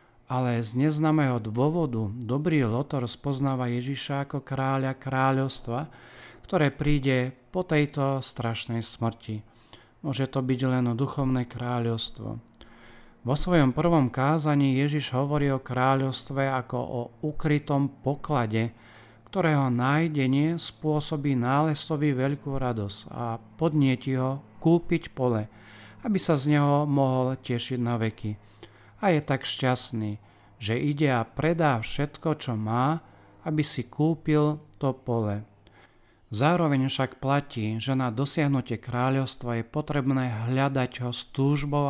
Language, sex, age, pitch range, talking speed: Slovak, male, 40-59, 115-145 Hz, 120 wpm